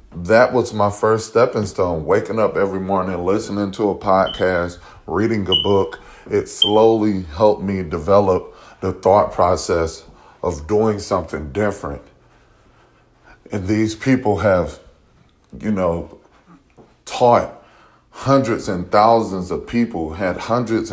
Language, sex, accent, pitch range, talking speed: English, male, American, 90-110 Hz, 125 wpm